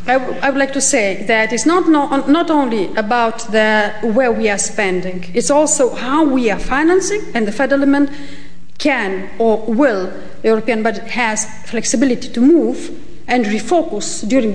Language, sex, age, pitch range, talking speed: English, female, 50-69, 220-265 Hz, 175 wpm